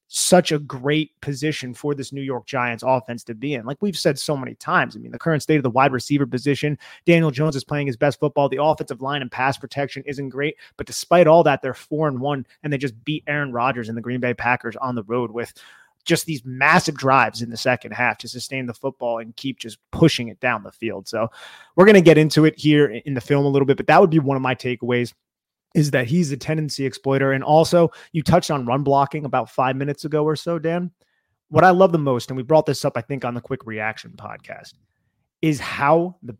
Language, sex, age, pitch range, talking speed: English, male, 30-49, 125-150 Hz, 245 wpm